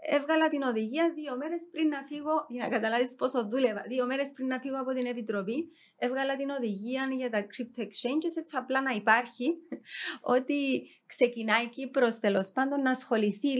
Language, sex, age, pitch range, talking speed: Greek, female, 30-49, 210-270 Hz, 175 wpm